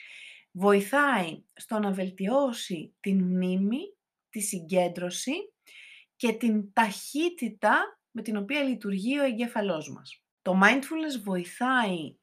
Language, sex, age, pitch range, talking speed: Greek, female, 30-49, 185-245 Hz, 105 wpm